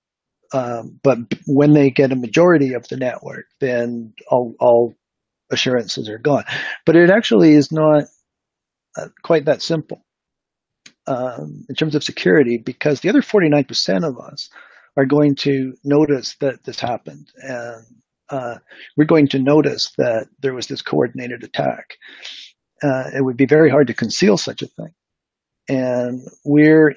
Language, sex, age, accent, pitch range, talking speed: English, male, 50-69, American, 130-150 Hz, 150 wpm